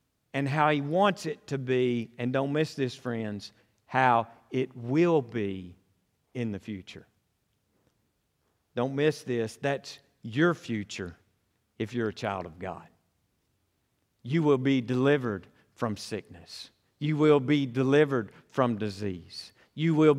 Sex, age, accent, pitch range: male, 50-69, American, 110-135 Hz